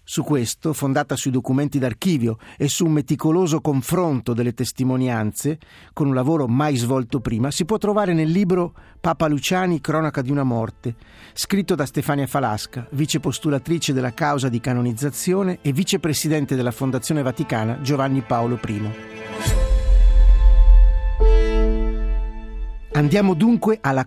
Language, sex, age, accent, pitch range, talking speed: Italian, male, 50-69, native, 120-170 Hz, 125 wpm